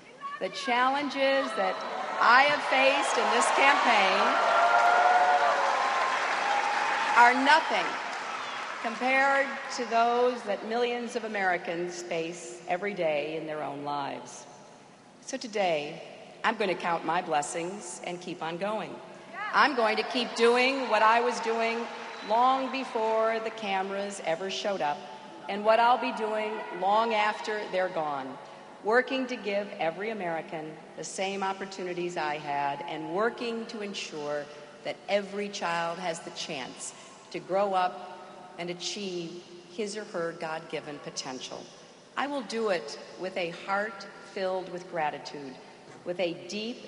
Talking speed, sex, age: 135 wpm, female, 50-69